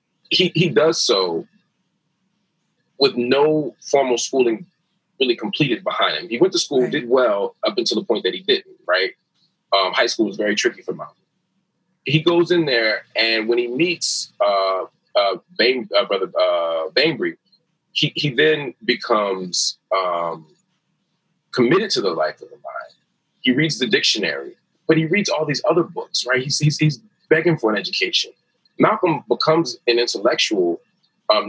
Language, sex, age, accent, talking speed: English, male, 30-49, American, 160 wpm